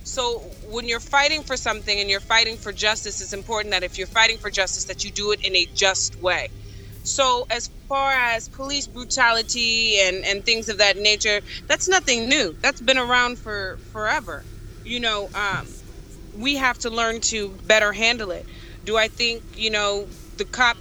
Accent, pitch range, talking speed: American, 195-235 Hz, 185 wpm